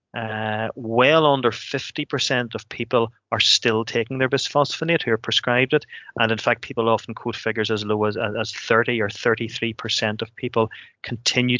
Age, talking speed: 30-49, 165 wpm